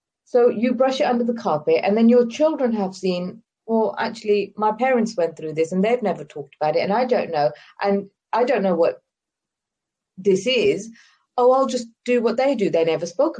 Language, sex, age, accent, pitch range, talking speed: English, female, 30-49, British, 180-240 Hz, 210 wpm